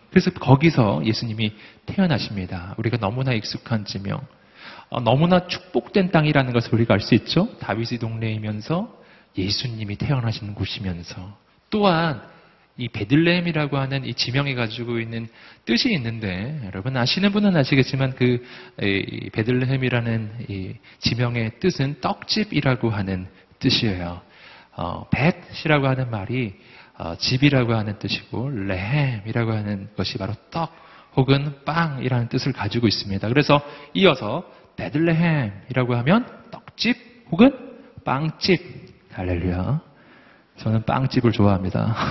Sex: male